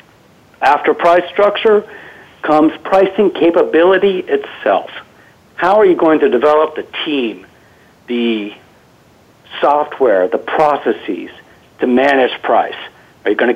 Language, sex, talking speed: English, male, 115 wpm